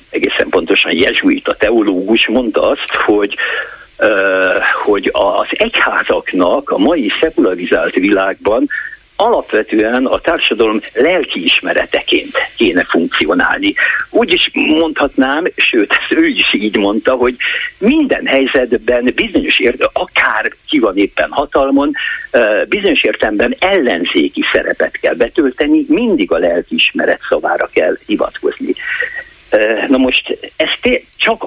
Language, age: Hungarian, 60-79